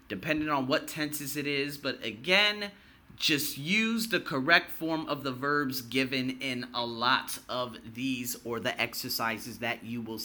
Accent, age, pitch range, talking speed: American, 30-49, 120-175 Hz, 165 wpm